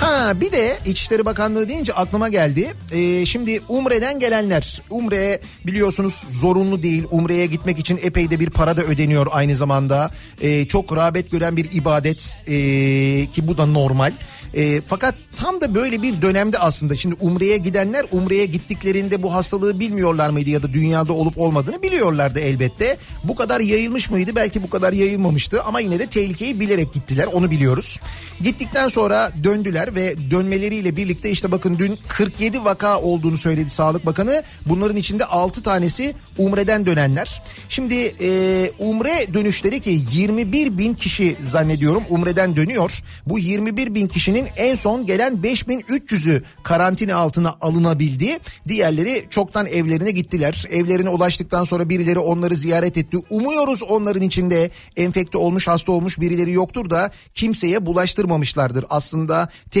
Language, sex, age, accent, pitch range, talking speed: Turkish, male, 40-59, native, 160-205 Hz, 140 wpm